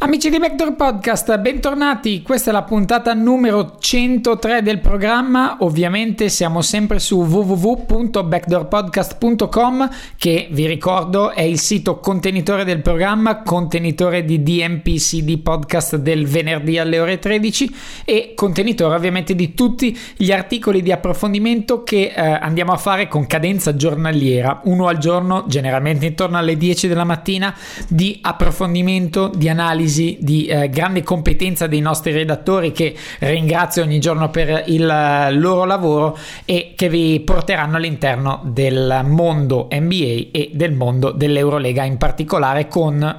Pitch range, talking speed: 155-195 Hz, 135 wpm